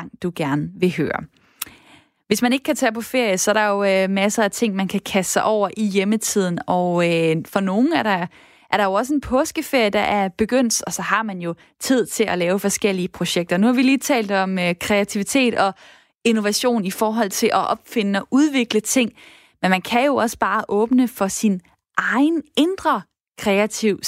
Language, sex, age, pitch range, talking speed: Danish, female, 20-39, 195-260 Hz, 205 wpm